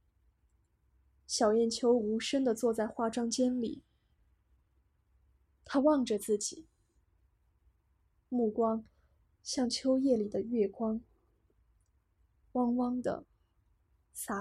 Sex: female